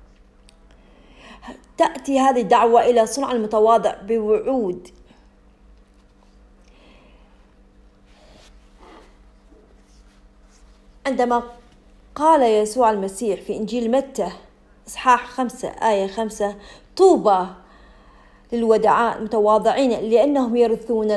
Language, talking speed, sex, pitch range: English, 65 wpm, female, 155-260 Hz